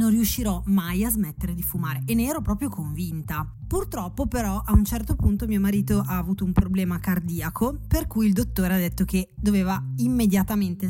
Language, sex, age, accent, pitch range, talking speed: Italian, female, 20-39, native, 175-215 Hz, 185 wpm